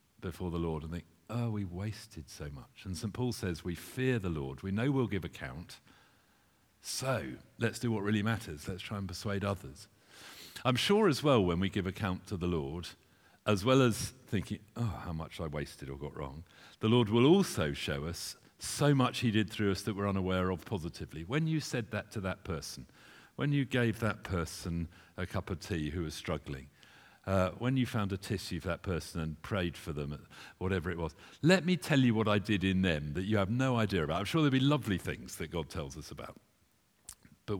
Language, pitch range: English, 85-115 Hz